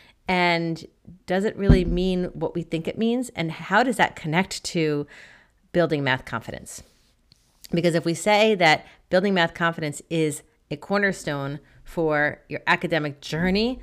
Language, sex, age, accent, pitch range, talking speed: English, female, 30-49, American, 150-180 Hz, 150 wpm